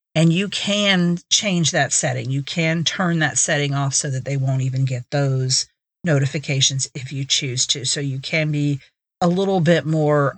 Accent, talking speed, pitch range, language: American, 185 wpm, 140-170 Hz, English